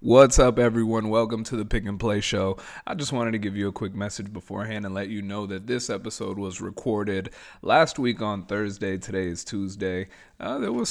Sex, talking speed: male, 215 wpm